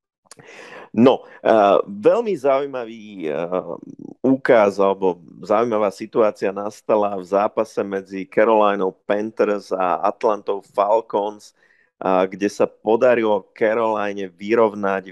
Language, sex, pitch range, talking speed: Slovak, male, 100-130 Hz, 85 wpm